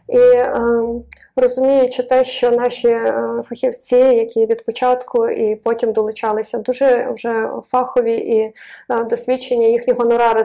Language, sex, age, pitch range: Ukrainian, female, 20-39, 235-280 Hz